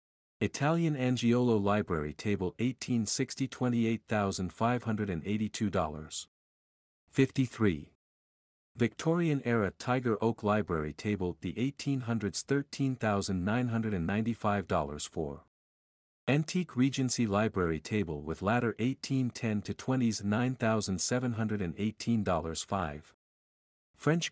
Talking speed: 70 wpm